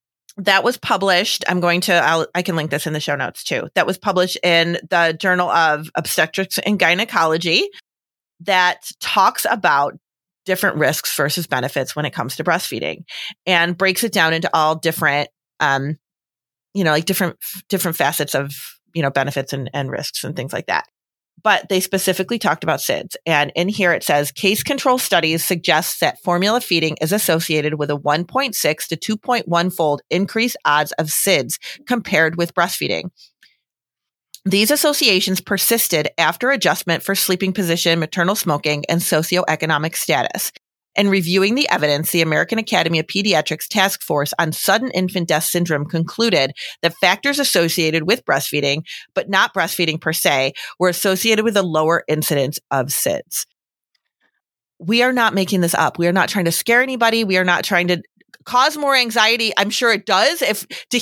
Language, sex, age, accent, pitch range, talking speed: English, female, 30-49, American, 160-200 Hz, 170 wpm